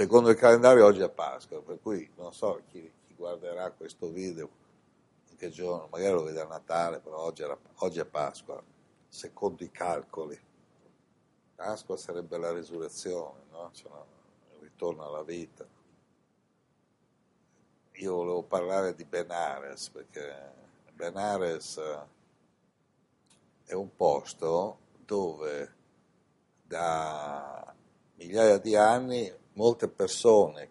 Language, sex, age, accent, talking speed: Italian, male, 60-79, native, 115 wpm